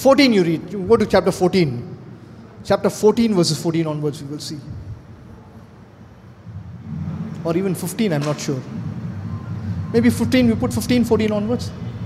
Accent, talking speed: Indian, 145 wpm